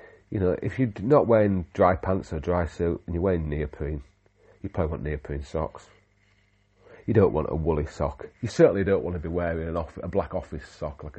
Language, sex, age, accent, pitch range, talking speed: English, male, 40-59, British, 80-100 Hz, 205 wpm